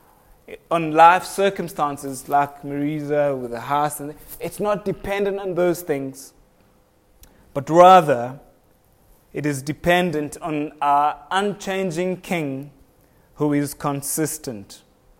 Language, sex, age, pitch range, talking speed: English, male, 20-39, 145-180 Hz, 105 wpm